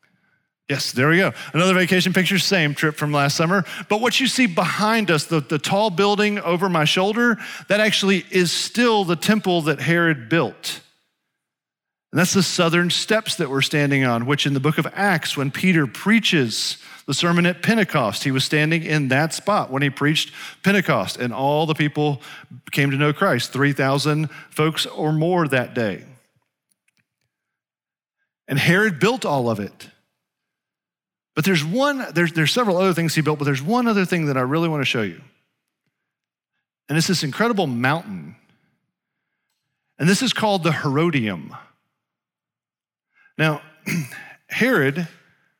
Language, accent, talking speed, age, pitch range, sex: English, American, 160 wpm, 40-59, 145-185 Hz, male